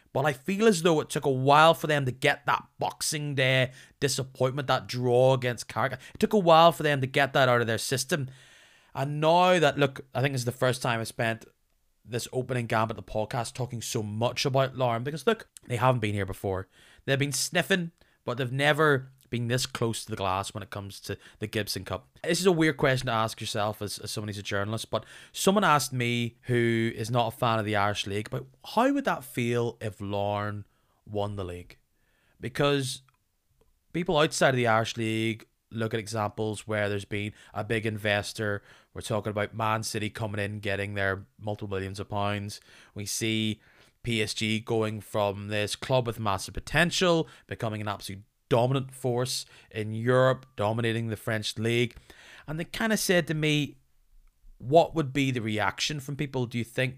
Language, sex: English, male